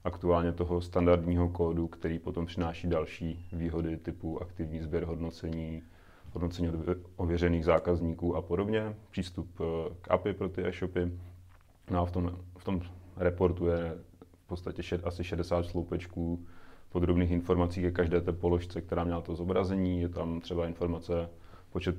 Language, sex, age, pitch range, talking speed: Czech, male, 30-49, 85-90 Hz, 140 wpm